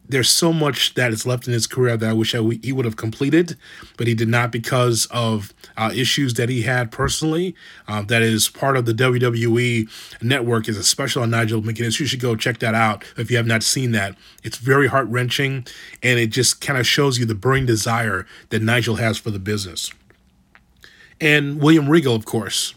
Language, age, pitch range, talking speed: English, 30-49, 110-130 Hz, 210 wpm